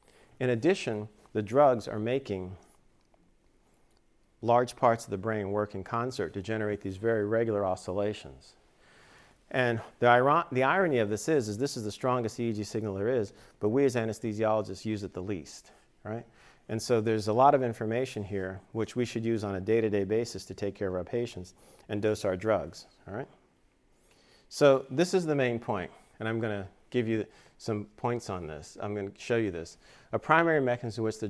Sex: male